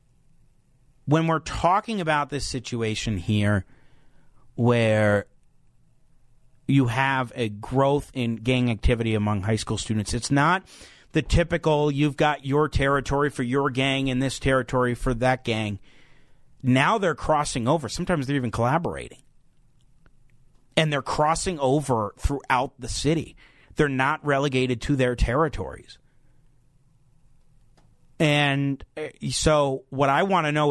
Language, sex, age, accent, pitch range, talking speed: English, male, 40-59, American, 125-150 Hz, 125 wpm